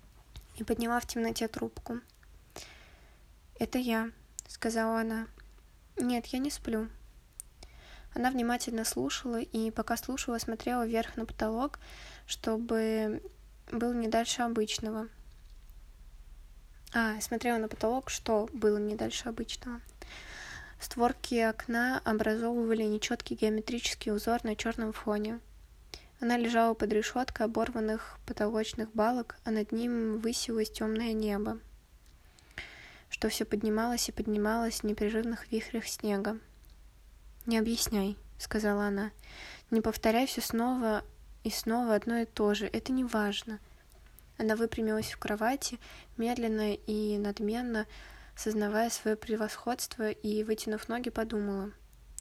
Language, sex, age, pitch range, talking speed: Russian, female, 20-39, 210-235 Hz, 115 wpm